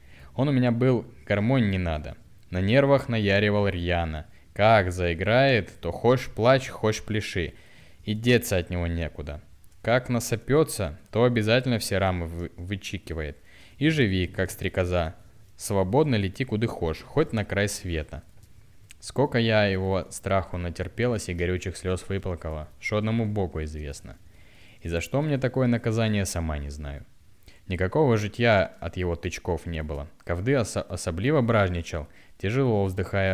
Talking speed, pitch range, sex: 140 wpm, 85-115 Hz, male